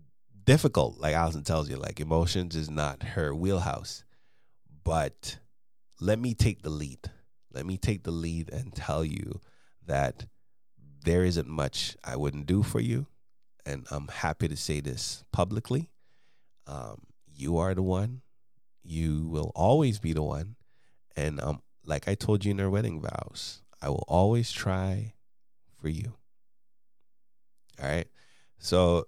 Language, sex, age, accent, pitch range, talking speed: English, male, 30-49, American, 75-105 Hz, 145 wpm